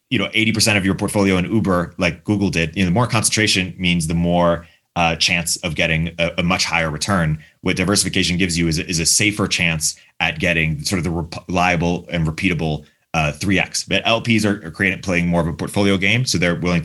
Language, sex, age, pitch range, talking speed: English, male, 30-49, 85-95 Hz, 230 wpm